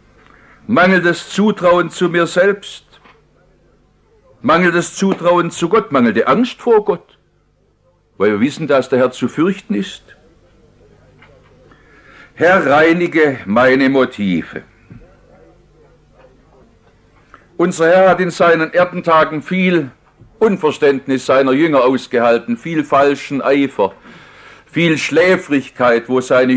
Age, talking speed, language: 60-79, 105 wpm, English